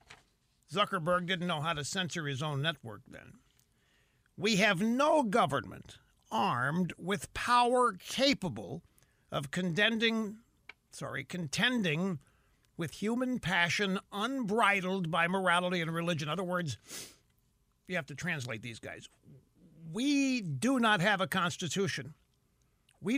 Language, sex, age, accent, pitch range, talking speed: English, male, 60-79, American, 160-220 Hz, 115 wpm